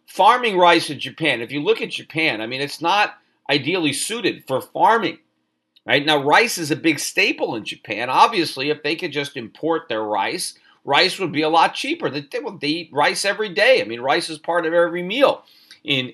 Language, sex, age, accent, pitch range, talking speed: English, male, 40-59, American, 145-195 Hz, 205 wpm